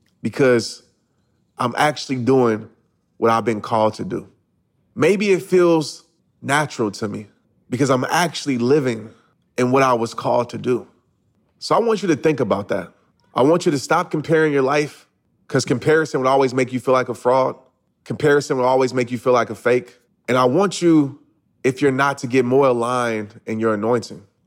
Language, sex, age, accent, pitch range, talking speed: English, male, 30-49, American, 120-155 Hz, 185 wpm